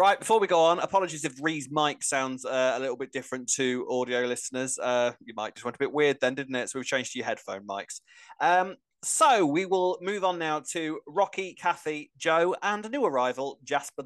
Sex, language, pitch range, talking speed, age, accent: male, English, 130-180 Hz, 220 wpm, 30-49, British